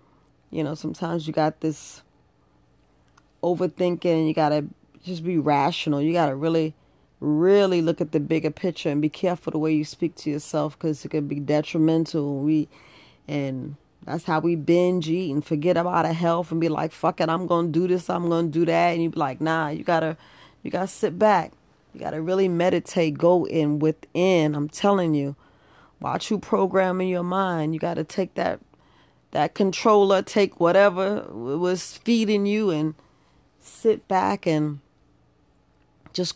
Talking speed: 175 wpm